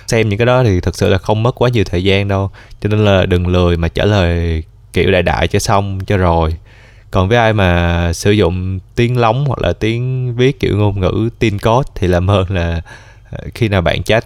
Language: Vietnamese